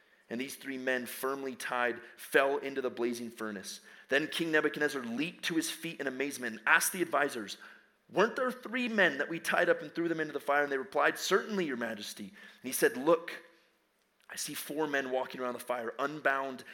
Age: 30-49